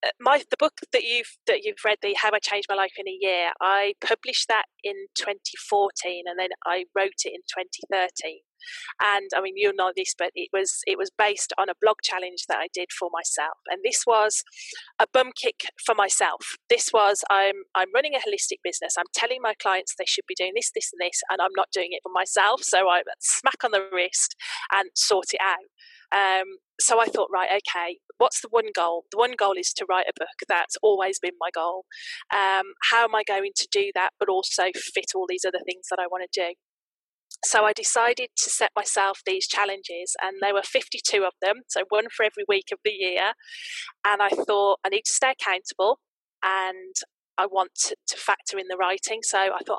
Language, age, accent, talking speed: English, 30-49, British, 220 wpm